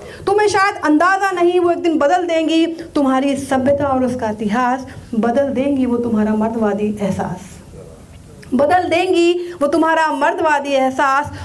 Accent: native